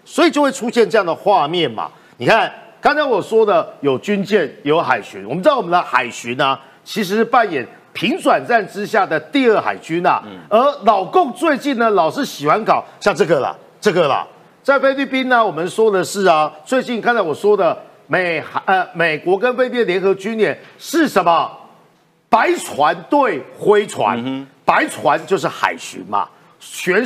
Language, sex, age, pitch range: Chinese, male, 50-69, 185-275 Hz